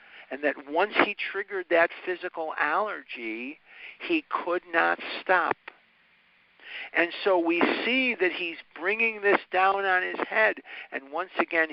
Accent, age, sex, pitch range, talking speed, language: American, 50-69, male, 130-175 Hz, 140 wpm, English